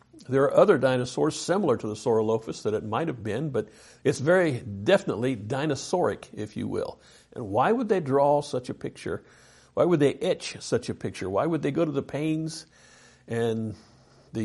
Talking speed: 185 wpm